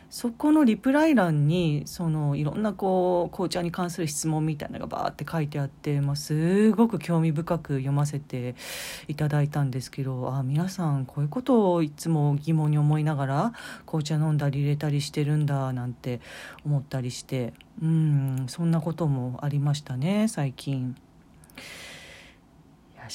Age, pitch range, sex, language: 40-59, 145-170 Hz, female, Japanese